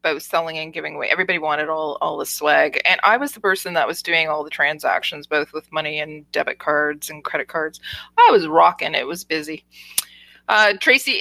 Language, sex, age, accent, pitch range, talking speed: English, female, 20-39, American, 155-200 Hz, 210 wpm